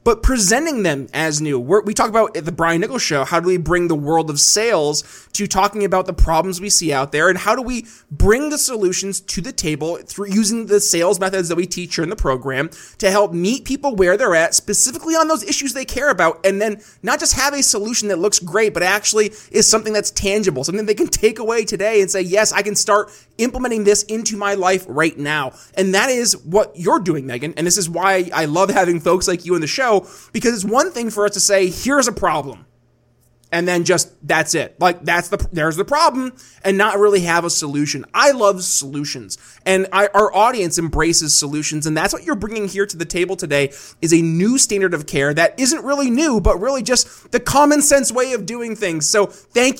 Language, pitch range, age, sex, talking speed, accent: English, 170-220 Hz, 20-39, male, 230 wpm, American